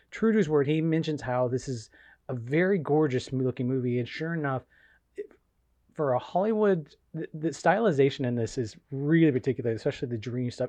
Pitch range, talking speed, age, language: 120-155 Hz, 165 wpm, 30-49, English